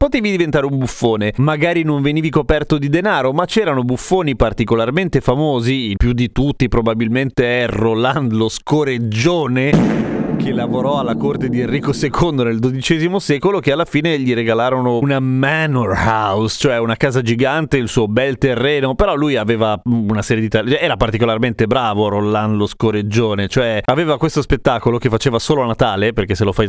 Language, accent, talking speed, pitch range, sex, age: Italian, native, 170 wpm, 115-150 Hz, male, 30-49